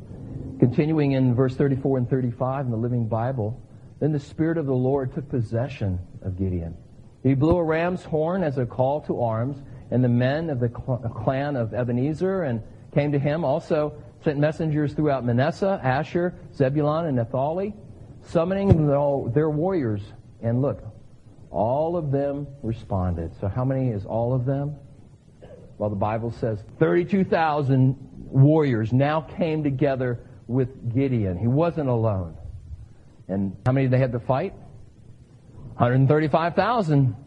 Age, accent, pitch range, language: 50-69, American, 115-155 Hz, English